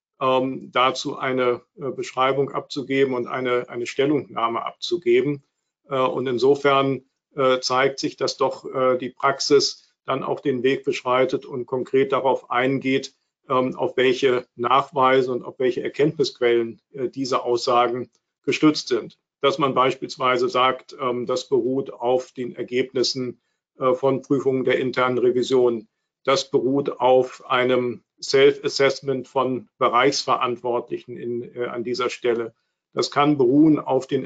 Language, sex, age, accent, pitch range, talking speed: German, male, 50-69, German, 125-140 Hz, 115 wpm